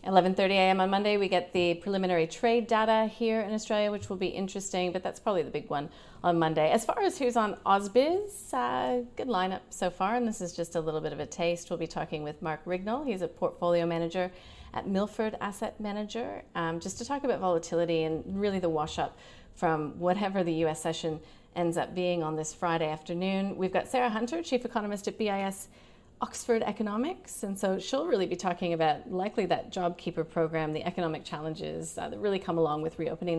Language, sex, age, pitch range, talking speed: English, female, 40-59, 165-225 Hz, 200 wpm